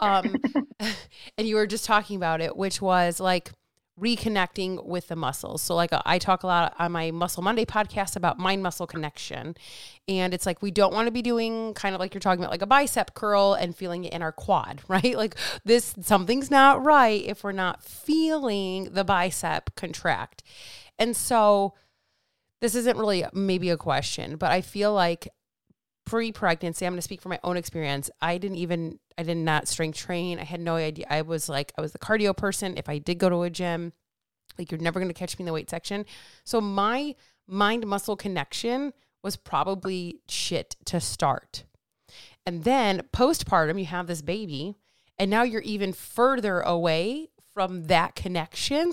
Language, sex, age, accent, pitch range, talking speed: English, female, 30-49, American, 170-215 Hz, 190 wpm